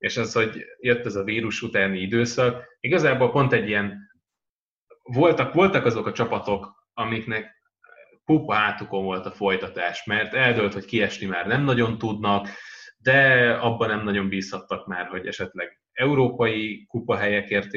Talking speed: 145 wpm